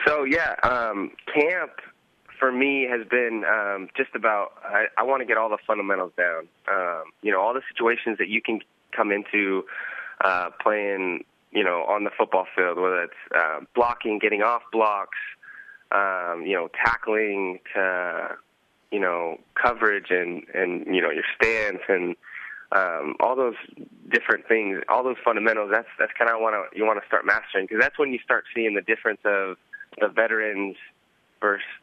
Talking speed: 170 wpm